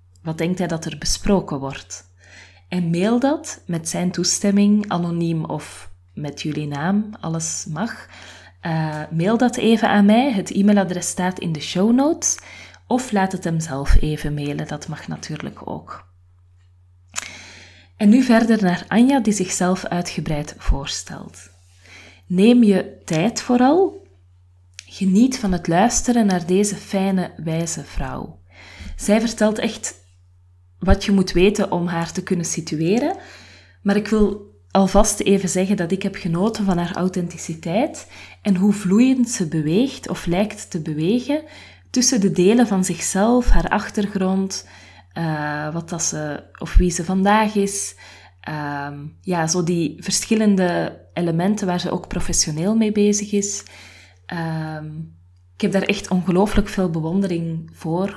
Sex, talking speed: female, 140 wpm